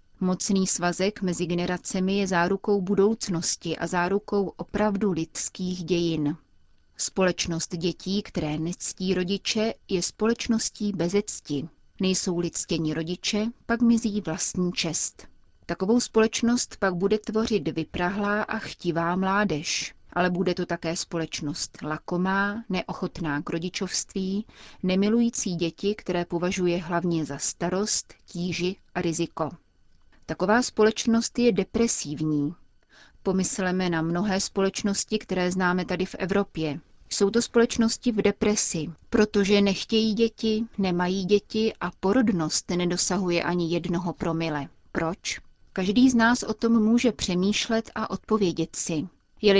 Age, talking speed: 30-49, 115 wpm